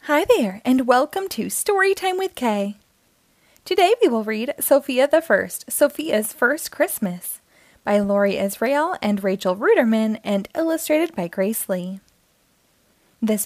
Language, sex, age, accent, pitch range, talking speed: English, female, 20-39, American, 200-285 Hz, 135 wpm